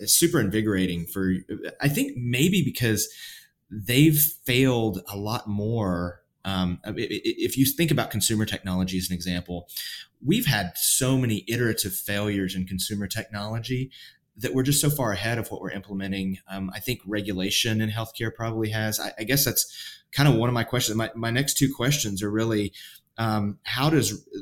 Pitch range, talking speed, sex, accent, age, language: 95-115 Hz, 170 wpm, male, American, 30-49, English